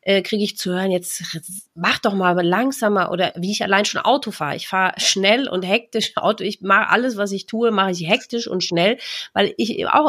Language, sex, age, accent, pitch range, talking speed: German, female, 30-49, German, 175-215 Hz, 215 wpm